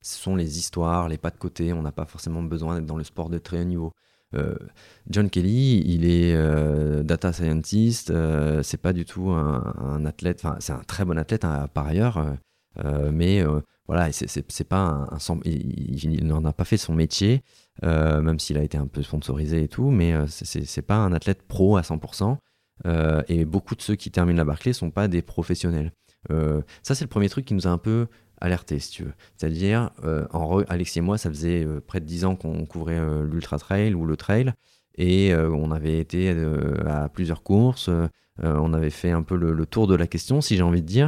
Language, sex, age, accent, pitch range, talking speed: French, male, 30-49, French, 80-95 Hz, 230 wpm